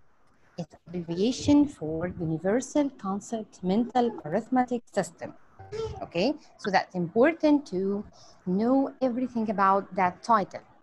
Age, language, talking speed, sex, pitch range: 30-49, English, 100 wpm, female, 195-260 Hz